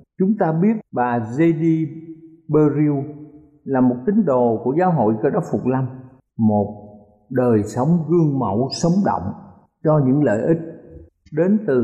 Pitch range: 125-185 Hz